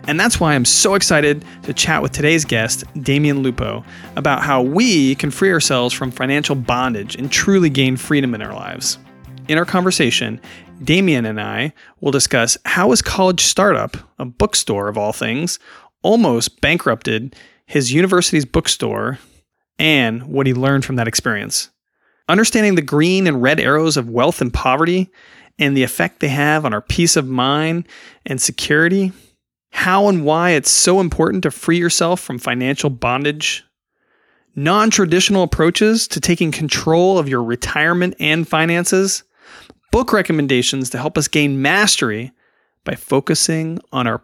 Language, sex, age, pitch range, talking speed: English, male, 30-49, 130-175 Hz, 155 wpm